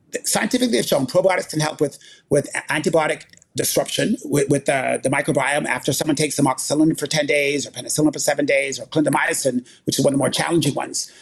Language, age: English, 30-49